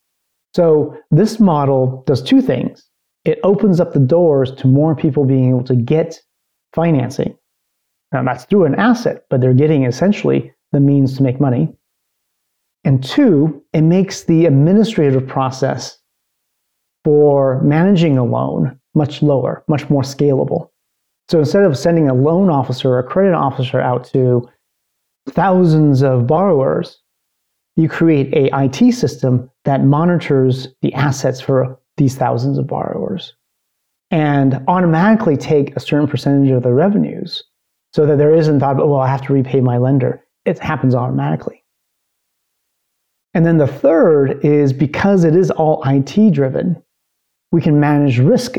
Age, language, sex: 30-49, English, male